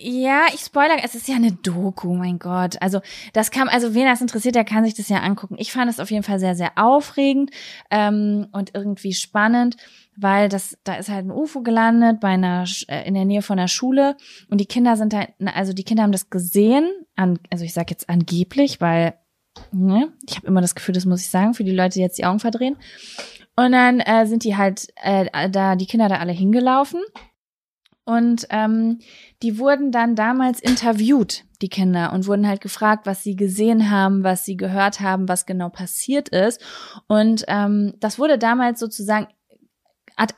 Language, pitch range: German, 190-235 Hz